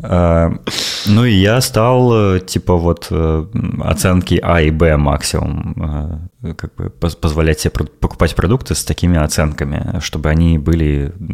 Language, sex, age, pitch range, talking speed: Russian, male, 20-39, 85-115 Hz, 120 wpm